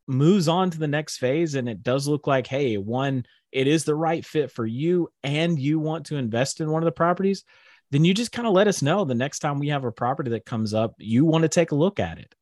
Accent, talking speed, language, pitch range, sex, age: American, 270 wpm, English, 115-155 Hz, male, 30-49